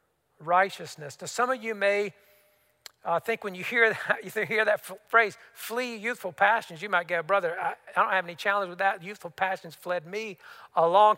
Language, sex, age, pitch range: English, male, 50-69, 175-215 Hz